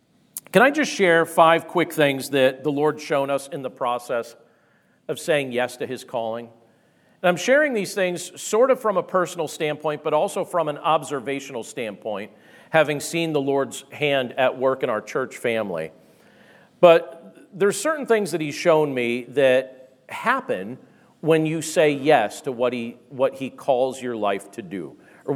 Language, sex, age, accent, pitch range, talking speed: English, male, 40-59, American, 135-175 Hz, 175 wpm